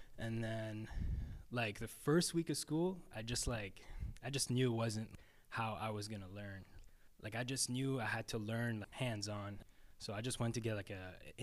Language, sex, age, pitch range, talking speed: English, male, 10-29, 100-120 Hz, 215 wpm